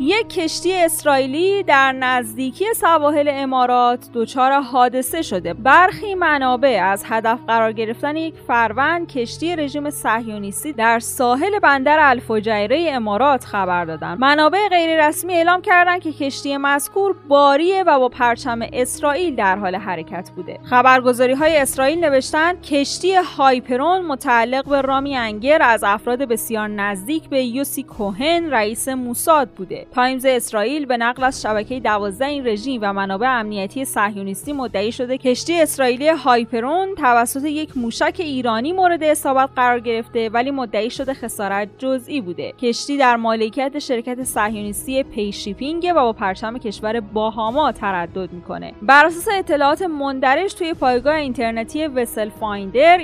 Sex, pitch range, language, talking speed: female, 225-295 Hz, Persian, 135 wpm